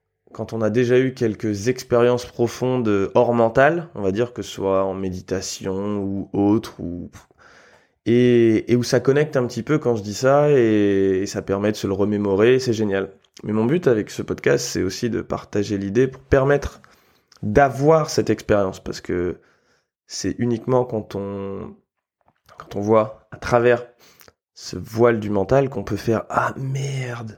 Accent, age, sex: French, 20-39, male